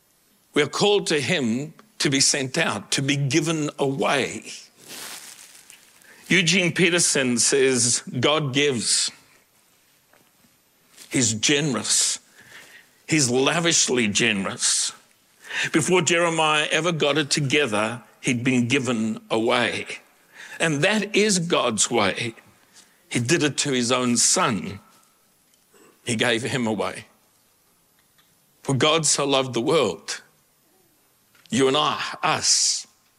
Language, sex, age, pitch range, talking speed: English, male, 60-79, 120-160 Hz, 105 wpm